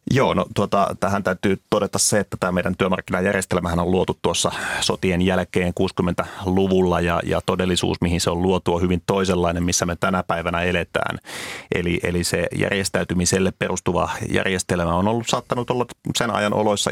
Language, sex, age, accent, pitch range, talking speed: Finnish, male, 30-49, native, 90-100 Hz, 160 wpm